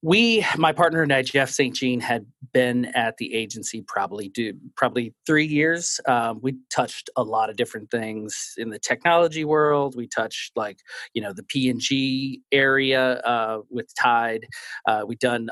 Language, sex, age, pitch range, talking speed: English, male, 30-49, 120-145 Hz, 180 wpm